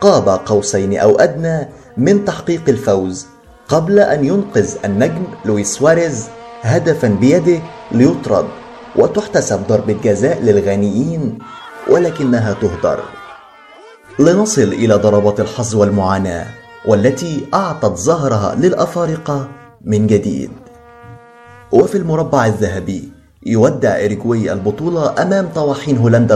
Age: 30-49